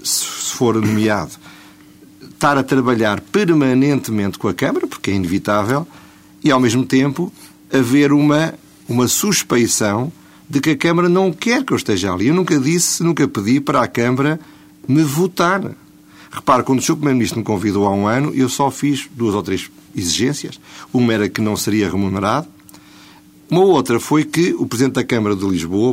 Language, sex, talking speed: Portuguese, male, 170 wpm